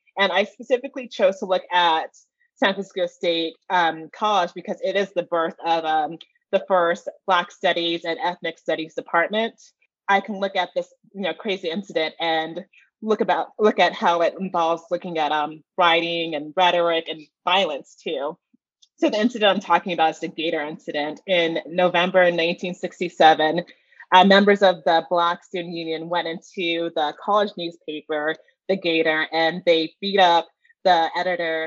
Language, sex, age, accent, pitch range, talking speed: English, female, 30-49, American, 165-195 Hz, 155 wpm